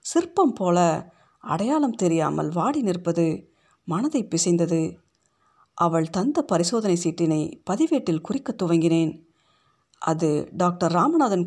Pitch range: 165-200 Hz